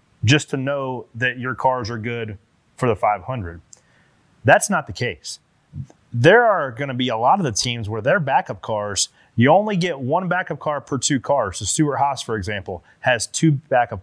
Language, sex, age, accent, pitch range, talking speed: English, male, 30-49, American, 115-145 Hz, 190 wpm